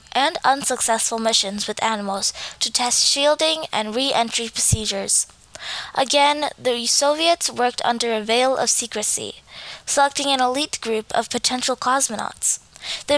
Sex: female